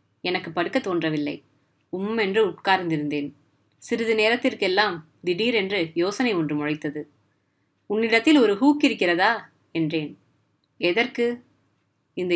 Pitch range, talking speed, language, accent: 165-225 Hz, 85 wpm, Tamil, native